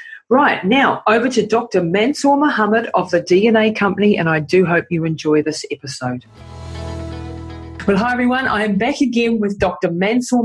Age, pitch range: 40-59, 180-225 Hz